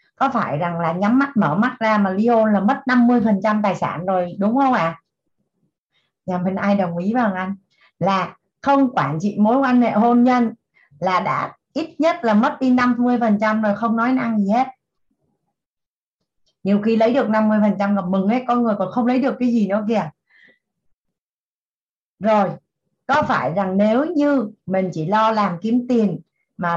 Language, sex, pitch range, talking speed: Vietnamese, female, 180-235 Hz, 190 wpm